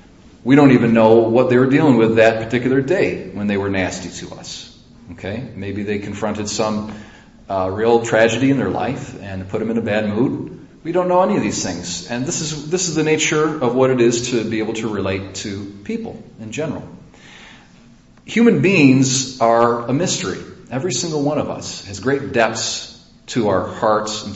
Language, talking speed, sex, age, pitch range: English, 195 wpm, male, 40-59, 105-135 Hz